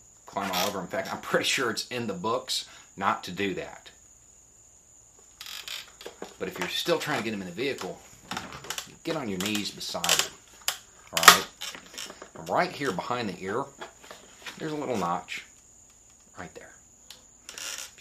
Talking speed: 155 wpm